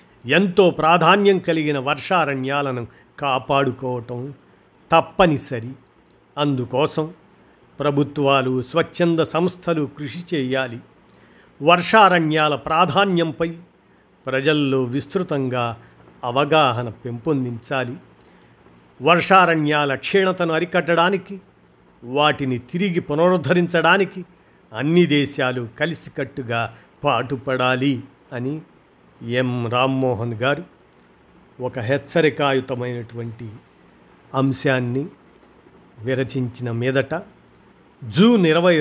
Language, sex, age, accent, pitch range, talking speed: Telugu, male, 50-69, native, 125-165 Hz, 60 wpm